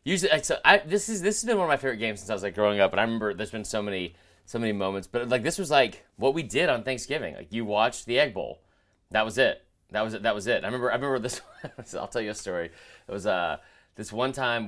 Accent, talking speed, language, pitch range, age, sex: American, 290 wpm, English, 95-130 Hz, 30-49, male